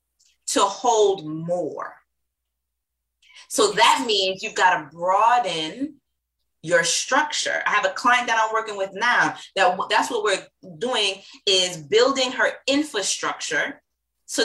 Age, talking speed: 20-39, 125 wpm